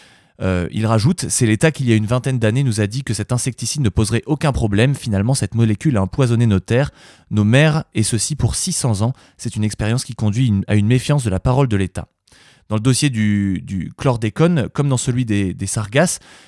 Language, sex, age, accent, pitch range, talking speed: French, male, 20-39, French, 105-135 Hz, 220 wpm